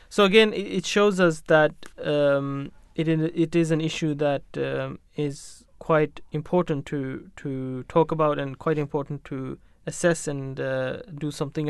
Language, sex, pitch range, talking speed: English, male, 140-160 Hz, 155 wpm